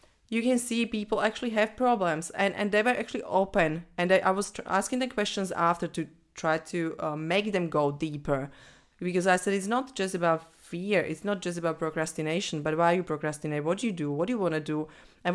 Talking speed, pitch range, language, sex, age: 225 wpm, 160-200 Hz, English, female, 30-49